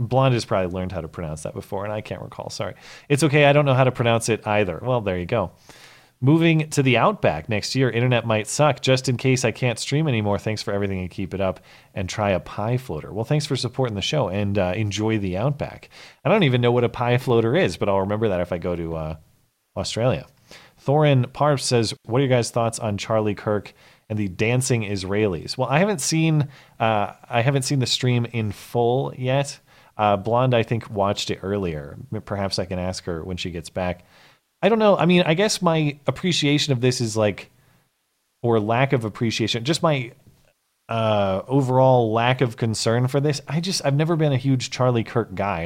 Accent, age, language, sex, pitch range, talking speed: American, 30-49, English, male, 100-135 Hz, 220 wpm